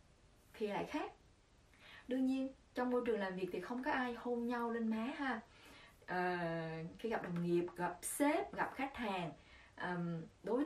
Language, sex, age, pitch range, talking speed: Vietnamese, female, 20-39, 185-270 Hz, 170 wpm